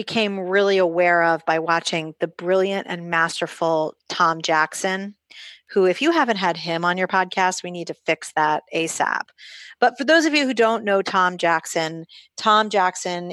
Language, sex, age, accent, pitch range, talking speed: English, female, 30-49, American, 165-200 Hz, 175 wpm